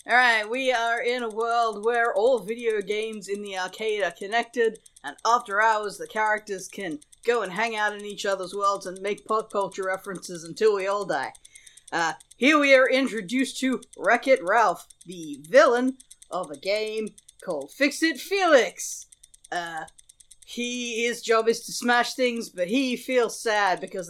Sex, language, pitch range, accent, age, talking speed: female, English, 185-235 Hz, American, 40-59, 165 wpm